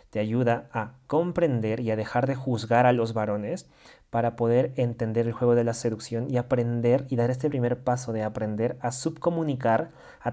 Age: 20-39